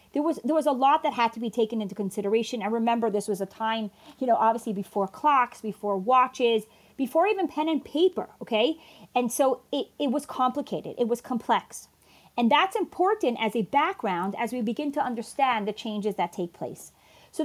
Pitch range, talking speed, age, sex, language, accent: 220-300 Hz, 195 wpm, 30-49, female, English, American